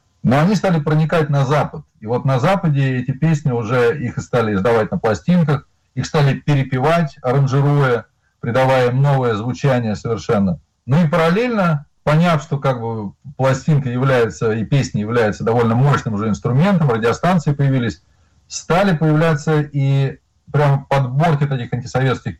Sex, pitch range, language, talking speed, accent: male, 120-155 Hz, Russian, 140 wpm, native